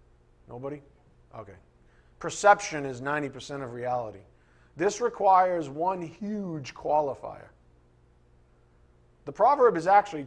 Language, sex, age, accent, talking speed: English, male, 50-69, American, 95 wpm